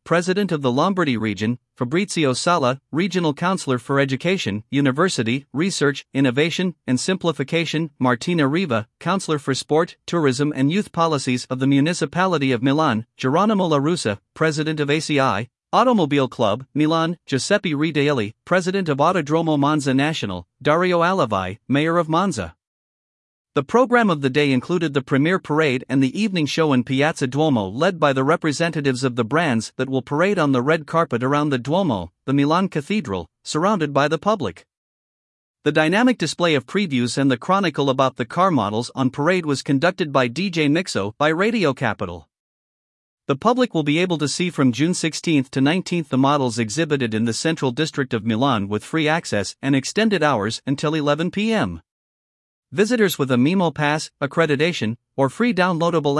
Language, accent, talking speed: English, American, 160 wpm